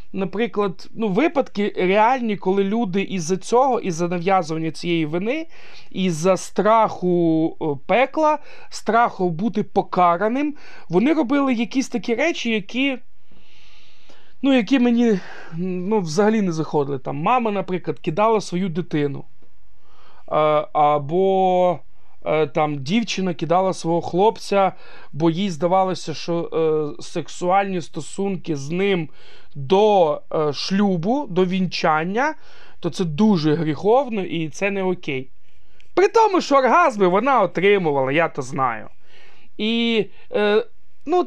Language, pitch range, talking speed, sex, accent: Ukrainian, 170-240 Hz, 115 wpm, male, native